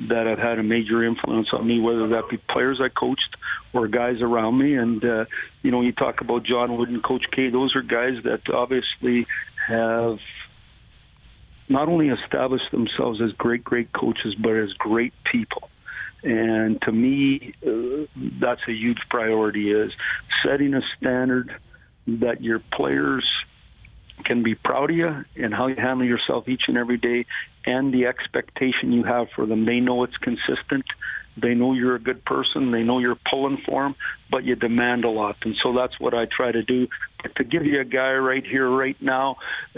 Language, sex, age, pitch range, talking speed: English, male, 50-69, 115-130 Hz, 185 wpm